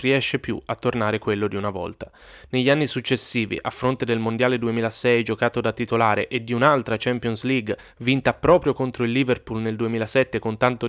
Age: 20-39